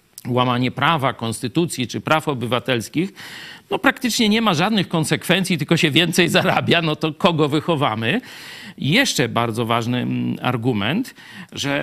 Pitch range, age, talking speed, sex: 125-165 Hz, 50-69, 130 wpm, male